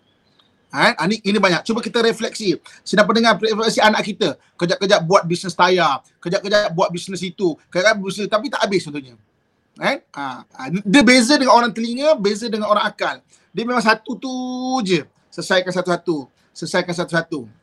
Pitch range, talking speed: 170-210 Hz, 155 wpm